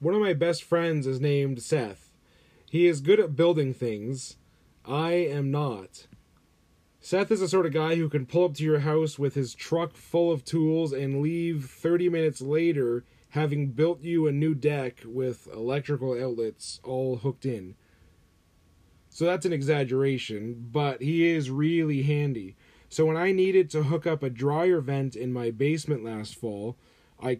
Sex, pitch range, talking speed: male, 120-160 Hz, 170 wpm